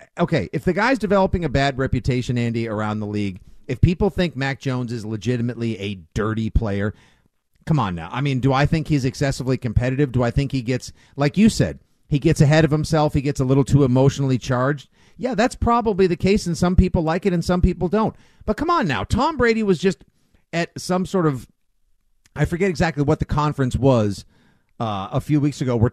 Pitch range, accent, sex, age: 125-170 Hz, American, male, 50-69